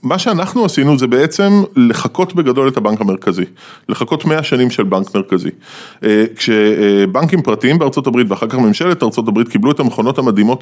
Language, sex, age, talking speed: Hebrew, male, 20-39, 165 wpm